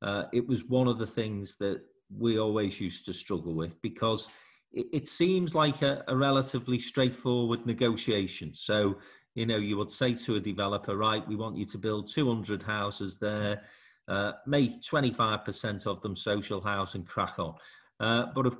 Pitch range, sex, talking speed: 105-130 Hz, male, 175 wpm